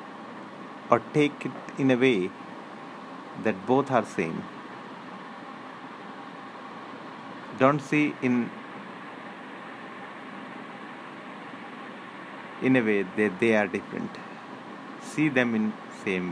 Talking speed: 90 wpm